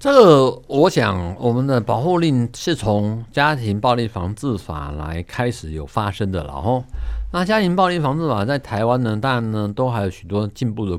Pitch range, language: 100-140 Hz, Chinese